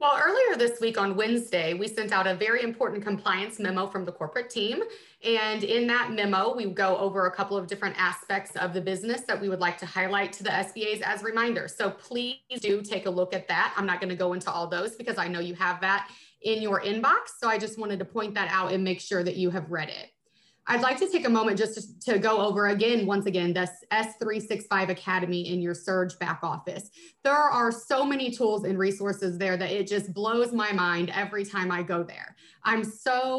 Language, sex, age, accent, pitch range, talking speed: English, female, 30-49, American, 185-225 Hz, 230 wpm